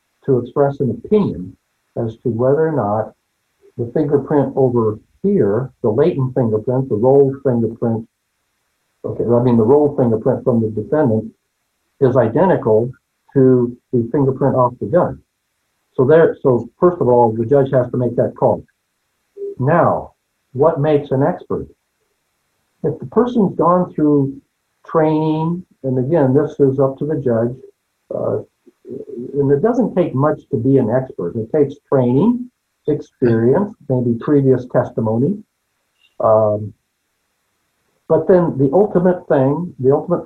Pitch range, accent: 120-155 Hz, American